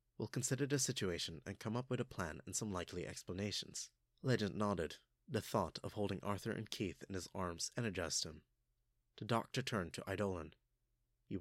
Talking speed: 180 wpm